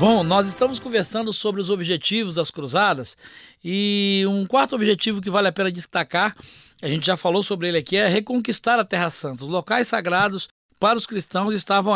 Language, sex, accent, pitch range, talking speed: Portuguese, male, Brazilian, 185-235 Hz, 185 wpm